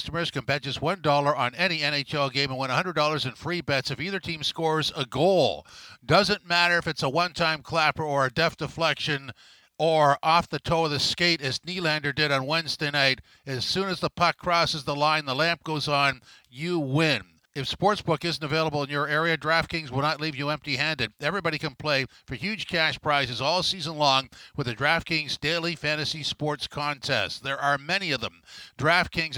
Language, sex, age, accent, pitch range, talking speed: English, male, 50-69, American, 140-165 Hz, 195 wpm